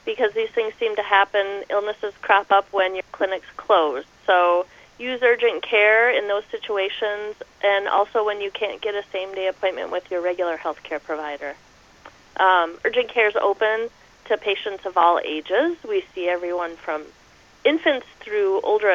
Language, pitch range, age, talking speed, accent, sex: English, 180-245 Hz, 30-49, 160 wpm, American, female